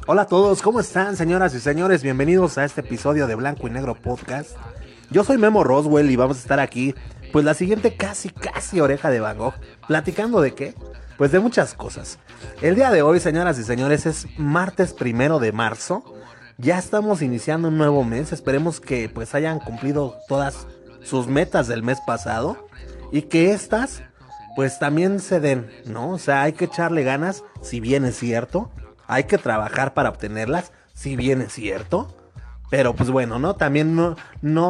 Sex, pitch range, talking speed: male, 125-180 Hz, 180 wpm